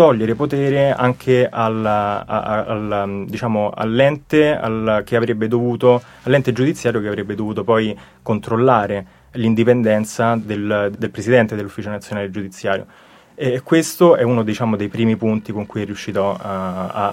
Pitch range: 100-120 Hz